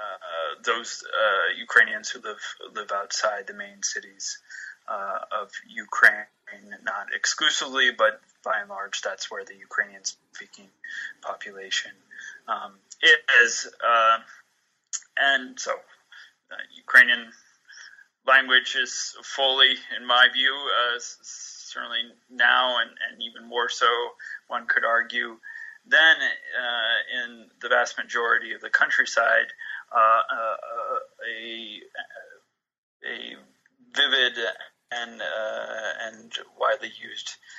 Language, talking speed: English, 110 wpm